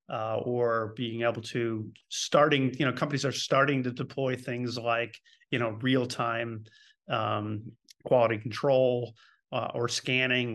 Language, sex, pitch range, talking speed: English, male, 120-150 Hz, 140 wpm